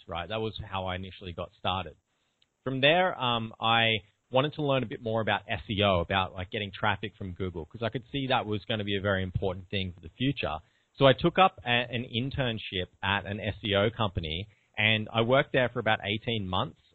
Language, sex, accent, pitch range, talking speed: English, male, Australian, 95-115 Hz, 215 wpm